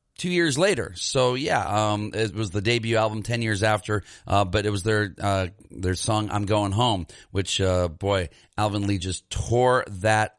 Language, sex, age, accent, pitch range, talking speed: English, male, 40-59, American, 95-125 Hz, 190 wpm